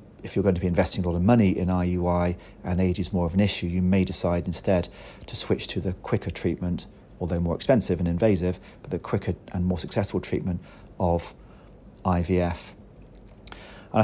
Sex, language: male, English